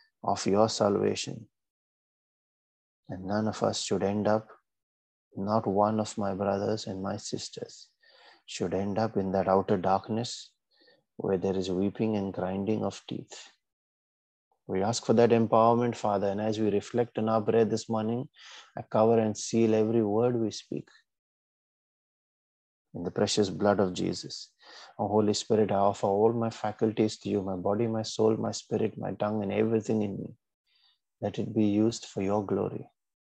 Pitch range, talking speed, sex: 100-110 Hz, 165 wpm, male